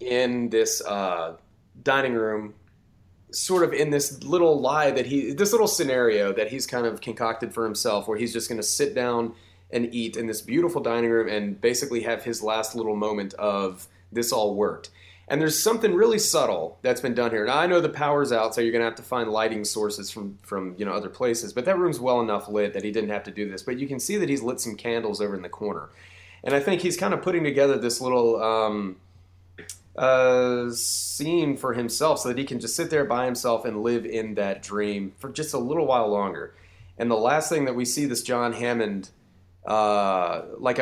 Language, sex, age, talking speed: English, male, 30-49, 220 wpm